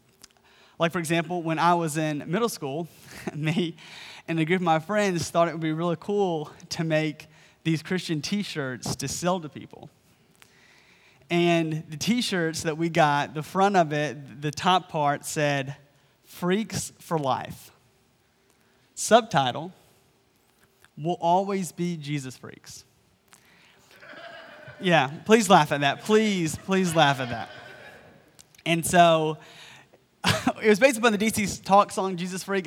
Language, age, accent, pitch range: English, 30-49, American, 155-190 Hz